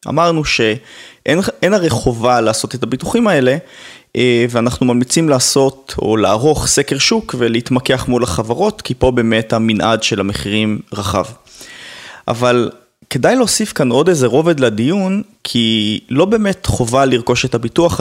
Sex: male